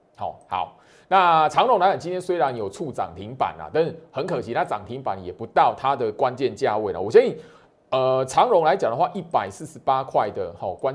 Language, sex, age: Chinese, male, 30-49